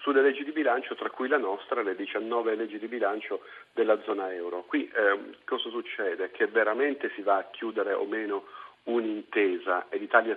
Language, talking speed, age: Italian, 180 wpm, 40-59